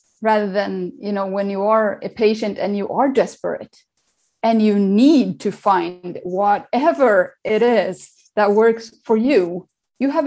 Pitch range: 185-240 Hz